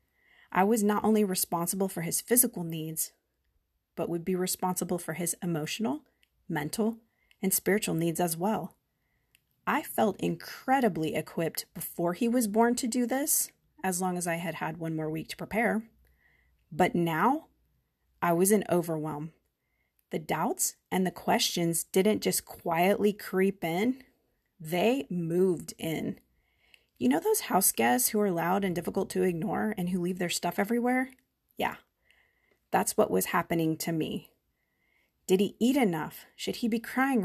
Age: 30-49